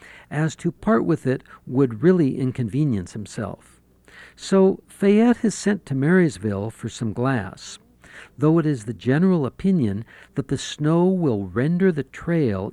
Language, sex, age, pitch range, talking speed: English, male, 60-79, 110-175 Hz, 145 wpm